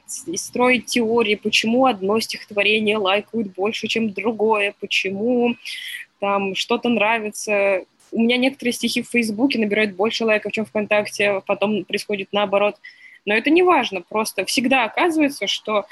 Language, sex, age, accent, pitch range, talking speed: Russian, female, 20-39, native, 200-255 Hz, 135 wpm